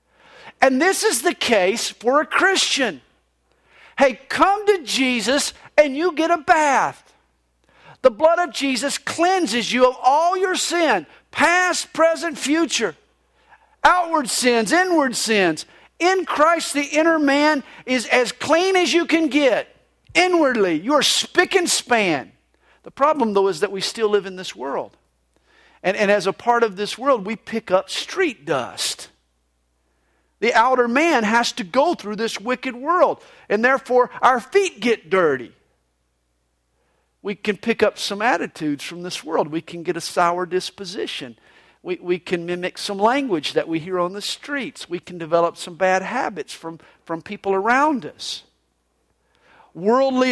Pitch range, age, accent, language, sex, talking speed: 195-310 Hz, 50-69, American, English, male, 155 wpm